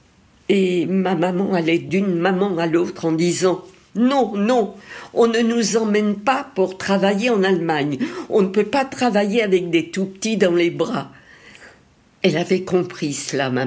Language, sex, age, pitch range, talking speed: French, female, 60-79, 160-205 Hz, 165 wpm